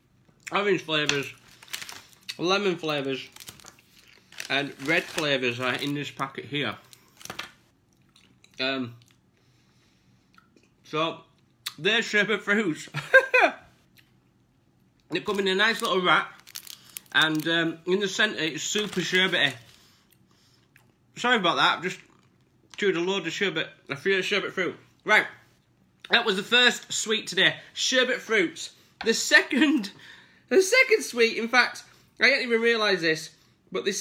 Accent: British